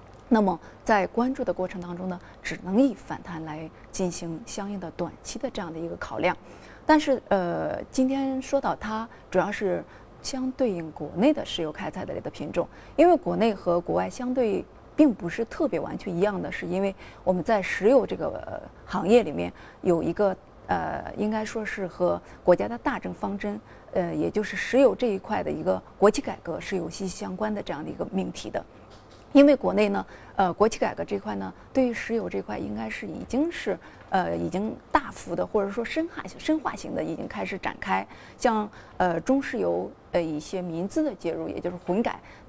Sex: female